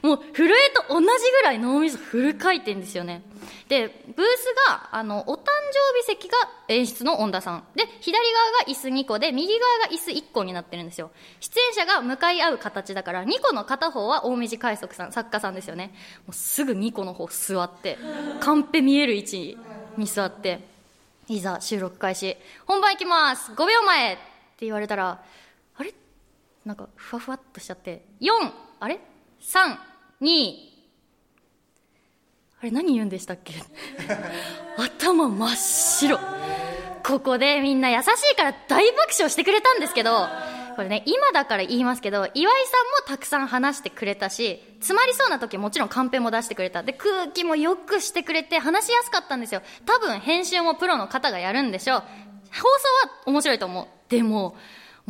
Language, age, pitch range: Japanese, 20-39, 205-345 Hz